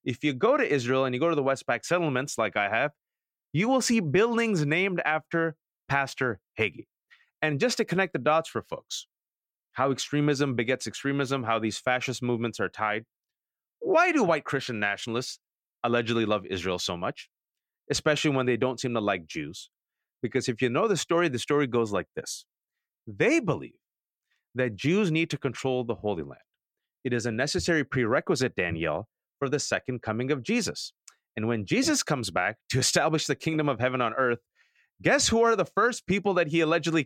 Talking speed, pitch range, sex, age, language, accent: 185 wpm, 125-165 Hz, male, 30-49, English, American